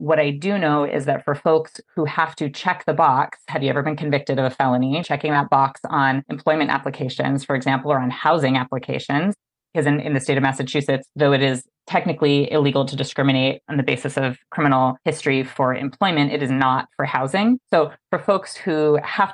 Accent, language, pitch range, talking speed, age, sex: American, English, 140-175 Hz, 205 wpm, 30-49, female